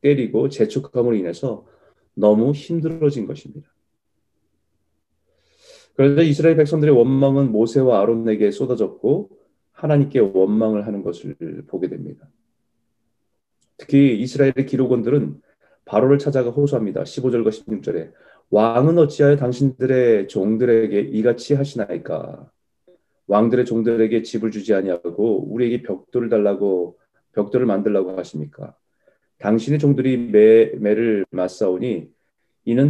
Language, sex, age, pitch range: Korean, male, 30-49, 110-140 Hz